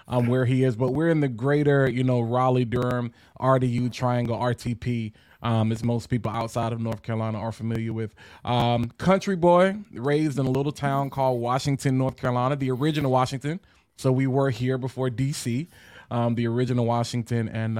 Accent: American